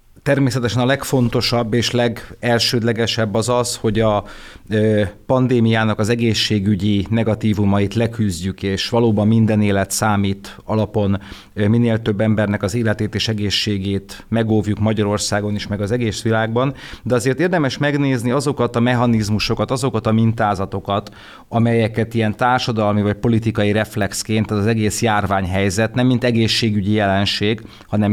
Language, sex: Hungarian, male